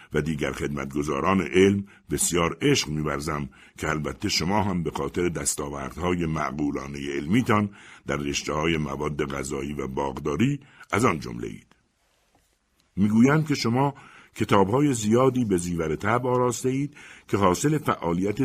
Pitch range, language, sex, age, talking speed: 80-120 Hz, Persian, male, 60-79, 125 wpm